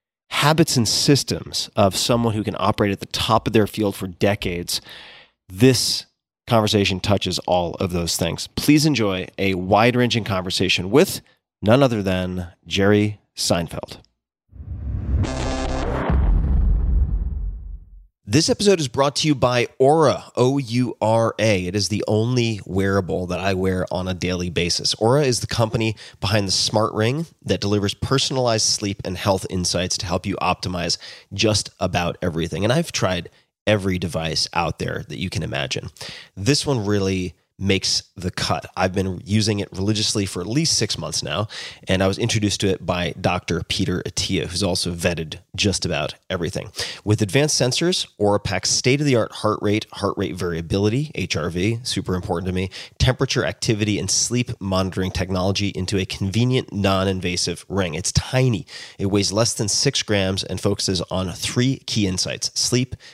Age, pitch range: 30-49, 90-115 Hz